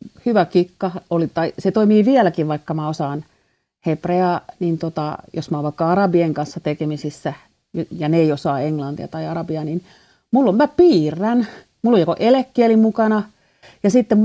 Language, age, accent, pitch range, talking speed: Finnish, 40-59, native, 170-215 Hz, 165 wpm